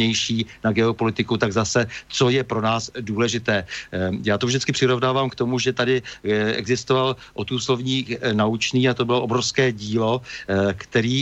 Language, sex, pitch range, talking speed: Slovak, male, 110-130 Hz, 140 wpm